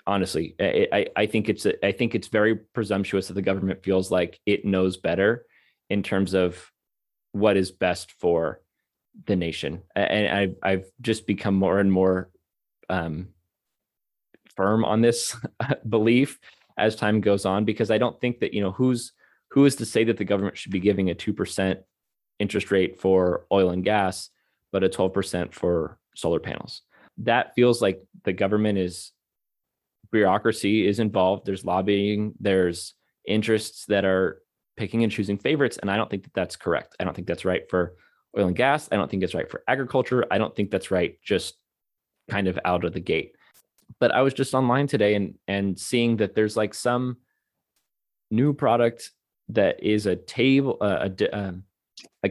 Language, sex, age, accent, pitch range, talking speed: English, male, 20-39, American, 95-115 Hz, 180 wpm